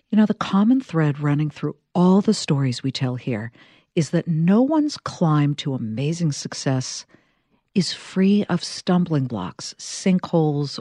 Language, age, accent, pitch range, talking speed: English, 50-69, American, 145-195 Hz, 150 wpm